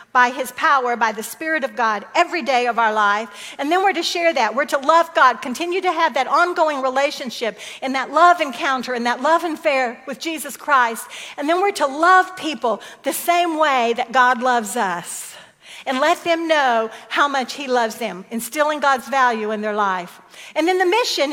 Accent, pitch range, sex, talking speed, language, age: American, 235-310 Hz, female, 205 wpm, English, 50-69